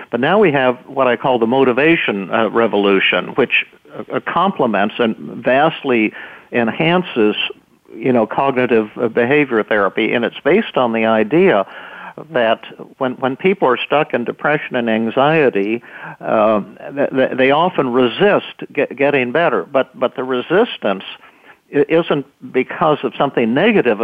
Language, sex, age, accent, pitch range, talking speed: English, male, 60-79, American, 115-145 Hz, 135 wpm